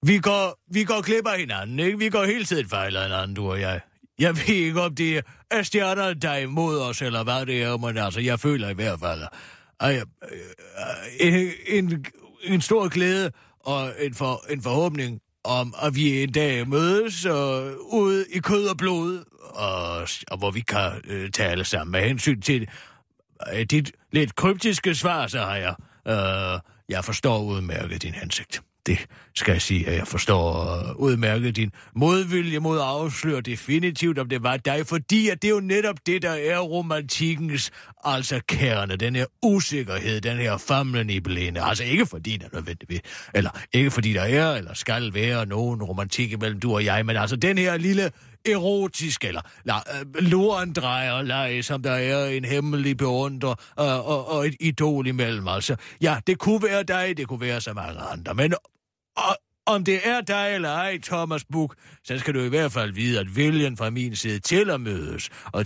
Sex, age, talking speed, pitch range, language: male, 30-49, 190 wpm, 110-170 Hz, Danish